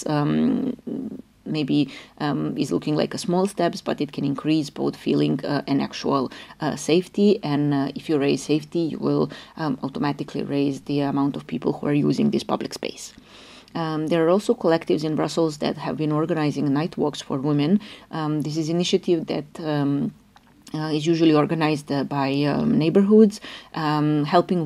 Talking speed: 175 wpm